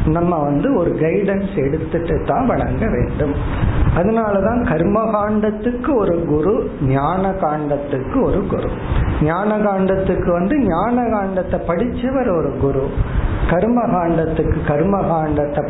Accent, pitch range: native, 155-195 Hz